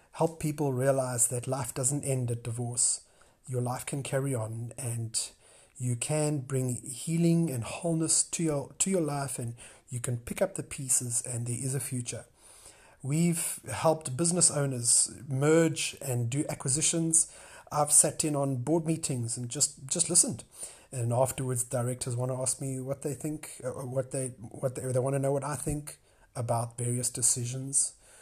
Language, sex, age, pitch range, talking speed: English, male, 30-49, 125-155 Hz, 175 wpm